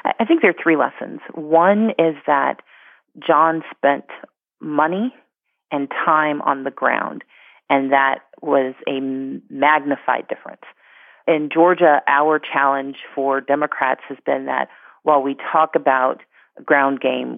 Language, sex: English, female